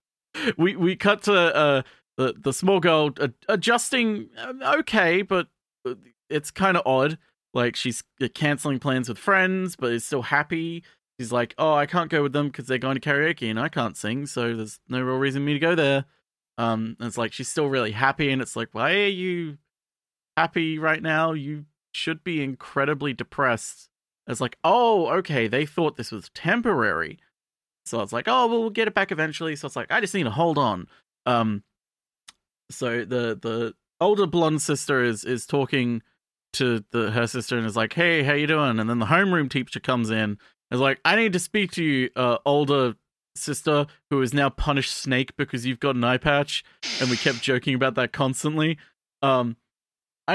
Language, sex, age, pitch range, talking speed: English, male, 30-49, 125-165 Hz, 195 wpm